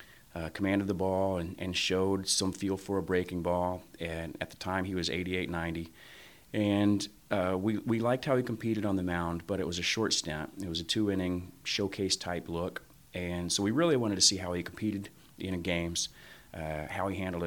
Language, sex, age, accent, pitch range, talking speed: English, male, 30-49, American, 85-100 Hz, 205 wpm